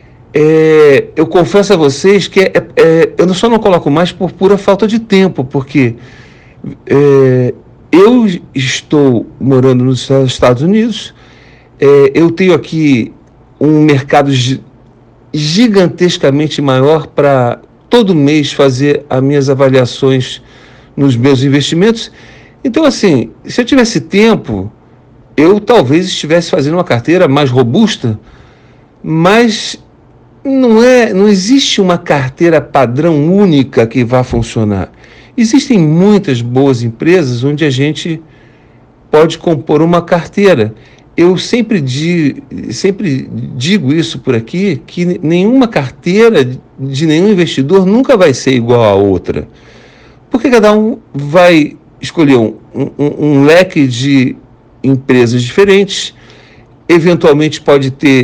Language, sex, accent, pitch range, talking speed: Portuguese, male, Brazilian, 130-185 Hz, 110 wpm